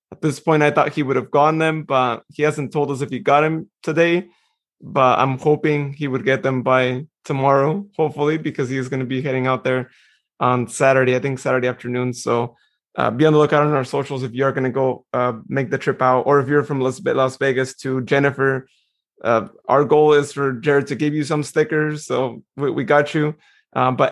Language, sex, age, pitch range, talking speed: English, male, 20-39, 130-155 Hz, 220 wpm